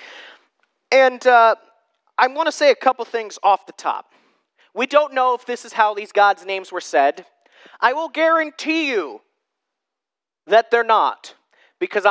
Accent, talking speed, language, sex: American, 160 wpm, English, male